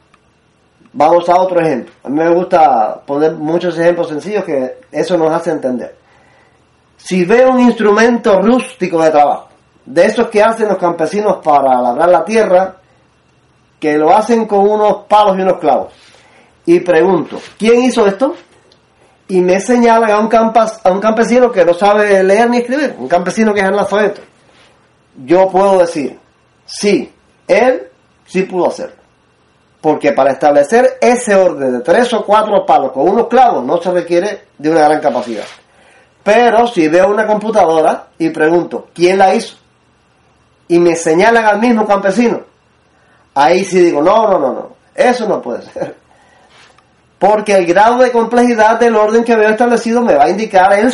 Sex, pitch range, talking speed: male, 170-225 Hz, 165 wpm